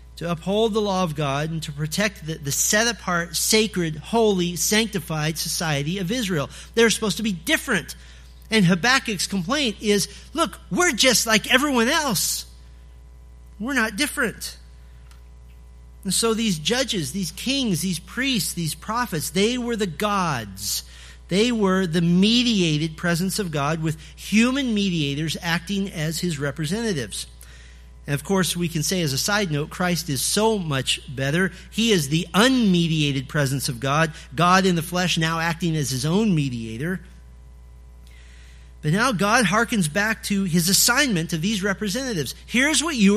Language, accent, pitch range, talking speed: English, American, 140-215 Hz, 150 wpm